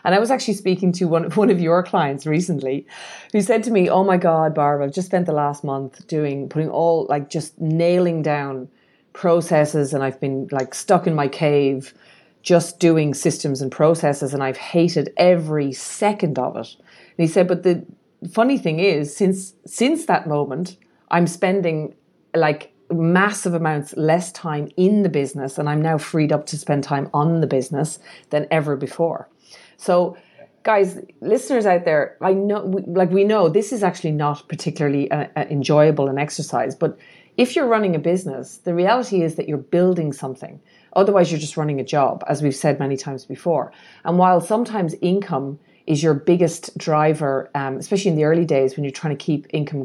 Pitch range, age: 145-180 Hz, 40-59